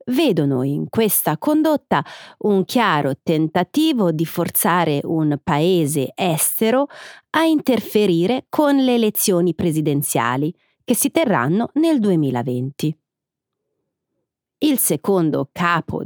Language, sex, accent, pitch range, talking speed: Italian, female, native, 165-250 Hz, 95 wpm